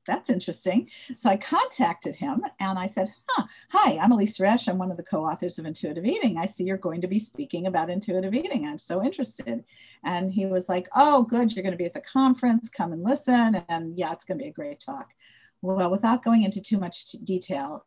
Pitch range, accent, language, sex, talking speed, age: 180-235 Hz, American, English, female, 225 wpm, 50-69